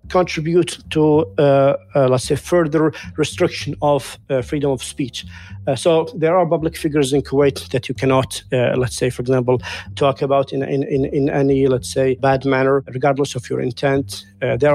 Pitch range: 130-165 Hz